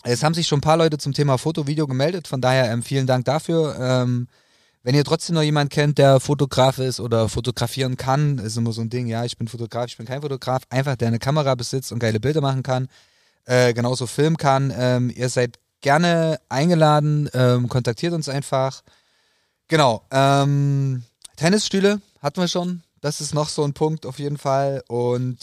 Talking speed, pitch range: 195 wpm, 115-145 Hz